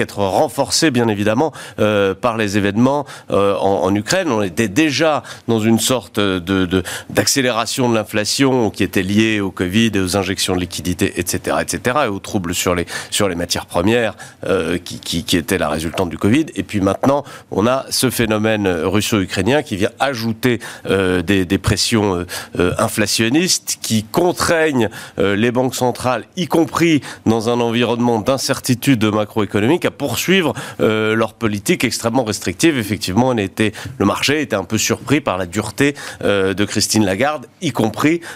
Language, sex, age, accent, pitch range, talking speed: French, male, 40-59, French, 100-130 Hz, 170 wpm